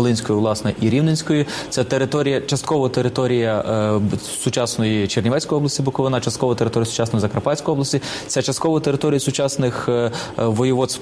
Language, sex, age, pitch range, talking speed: English, male, 20-39, 120-150 Hz, 125 wpm